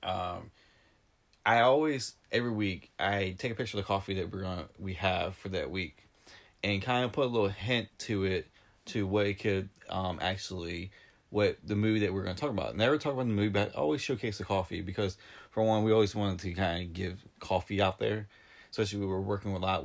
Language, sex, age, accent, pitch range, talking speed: English, male, 20-39, American, 95-110 Hz, 220 wpm